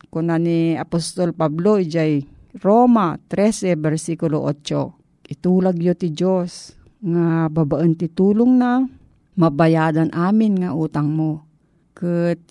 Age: 40-59